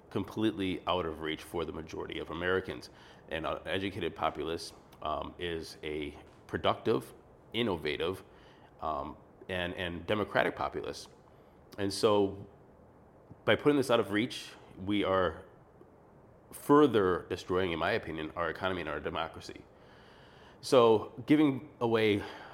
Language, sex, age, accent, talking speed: English, male, 30-49, American, 120 wpm